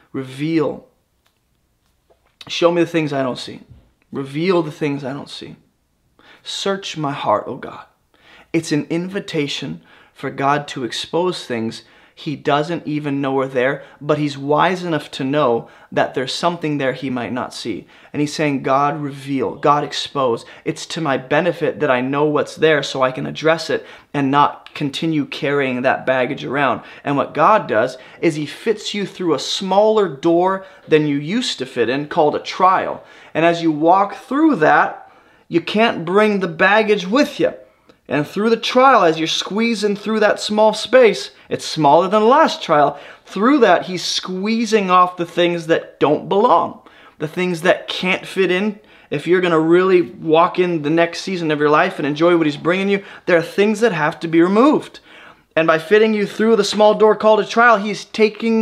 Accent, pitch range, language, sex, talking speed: American, 150-210 Hz, English, male, 185 wpm